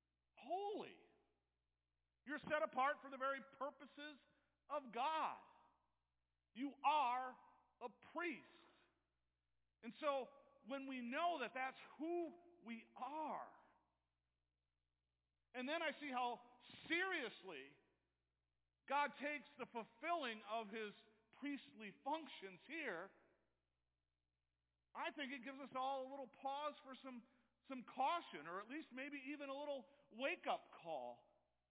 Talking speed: 115 wpm